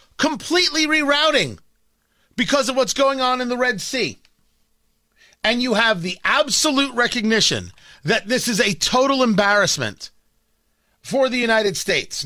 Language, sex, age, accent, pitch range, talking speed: English, male, 30-49, American, 180-255 Hz, 130 wpm